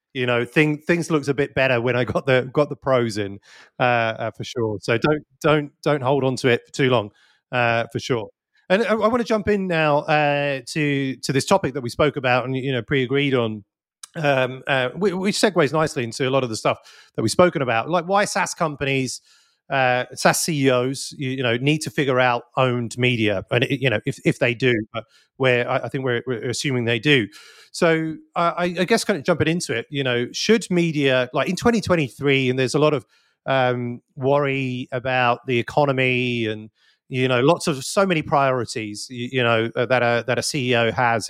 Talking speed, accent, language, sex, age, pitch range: 215 wpm, British, English, male, 30-49, 120-150 Hz